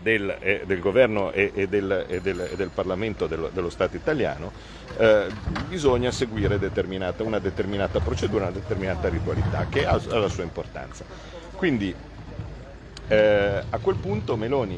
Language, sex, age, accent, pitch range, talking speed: Italian, male, 50-69, native, 90-110 Hz, 135 wpm